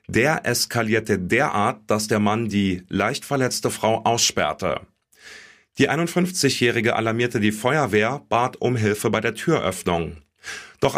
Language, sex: German, male